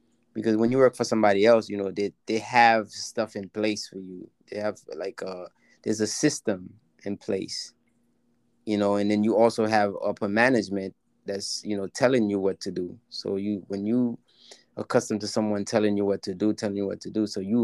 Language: English